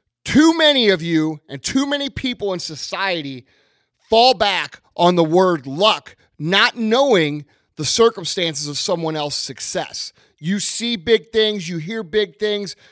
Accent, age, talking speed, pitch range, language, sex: American, 30-49, 150 wpm, 150-215 Hz, English, male